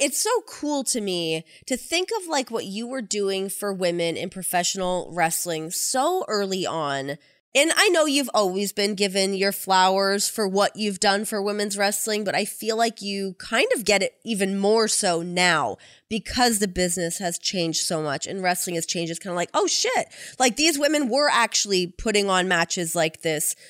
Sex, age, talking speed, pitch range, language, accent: female, 20-39, 195 wpm, 180-230 Hz, English, American